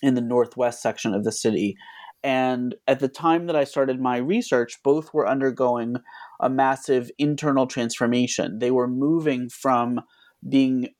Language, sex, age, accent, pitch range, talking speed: English, male, 30-49, American, 120-135 Hz, 155 wpm